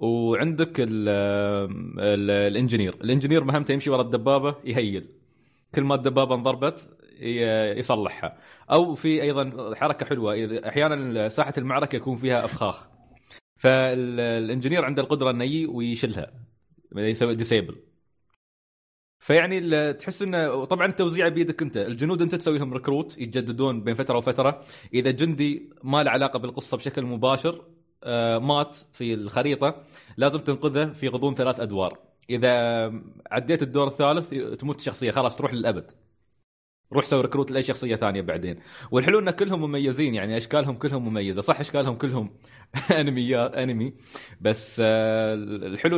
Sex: male